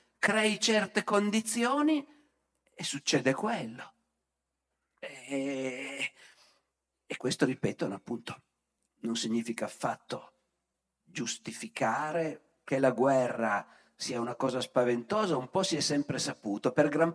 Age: 50-69